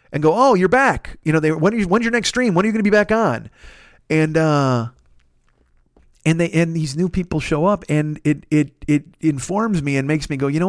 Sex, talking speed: male, 240 wpm